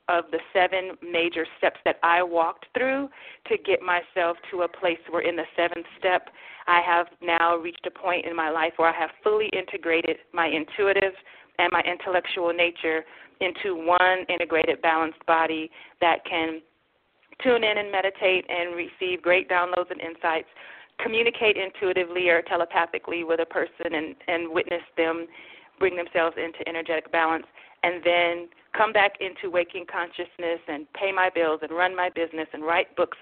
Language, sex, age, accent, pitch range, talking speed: English, female, 40-59, American, 165-185 Hz, 165 wpm